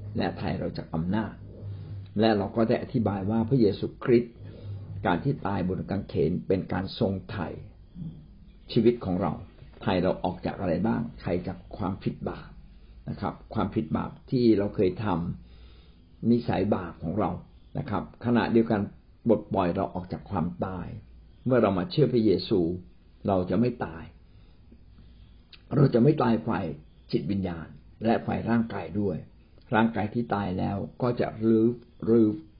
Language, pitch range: Thai, 90-115 Hz